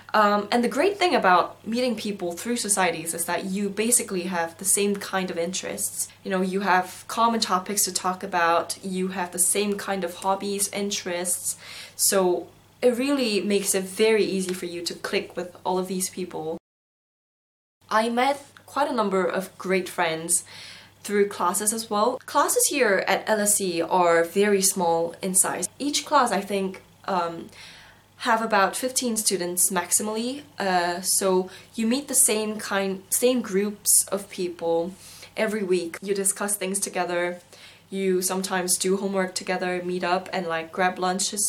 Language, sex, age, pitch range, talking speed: English, female, 10-29, 180-205 Hz, 160 wpm